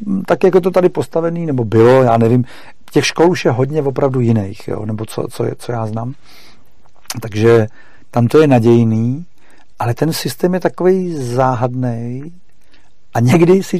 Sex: male